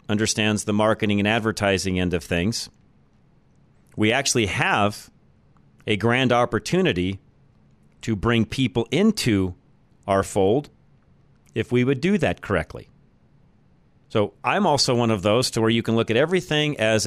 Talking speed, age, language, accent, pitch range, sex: 140 wpm, 40-59, English, American, 100-130 Hz, male